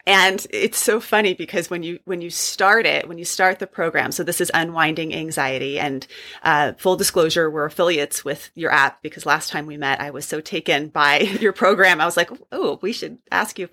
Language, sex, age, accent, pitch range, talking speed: English, female, 30-49, American, 160-200 Hz, 225 wpm